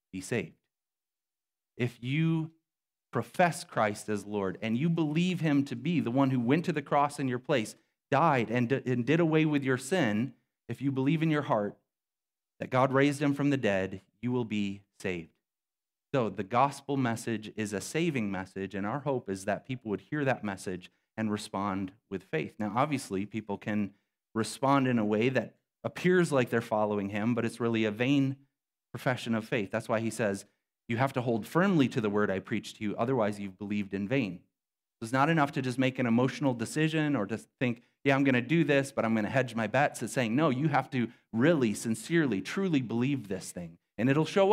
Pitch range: 105-140 Hz